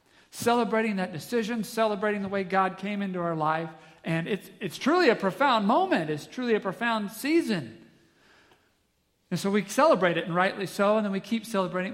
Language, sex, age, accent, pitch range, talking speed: English, male, 40-59, American, 145-195 Hz, 180 wpm